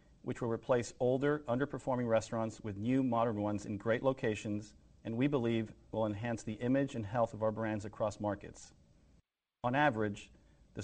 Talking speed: 165 wpm